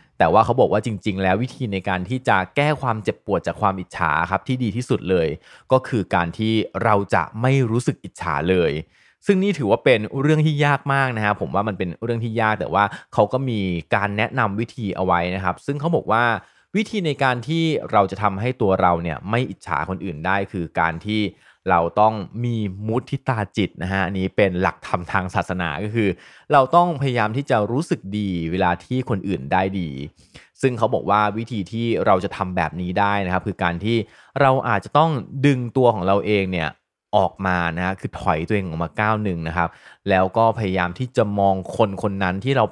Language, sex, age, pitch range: Thai, male, 20-39, 95-120 Hz